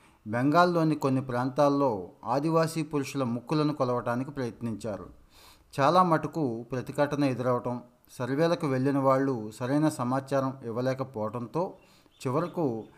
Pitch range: 120-145 Hz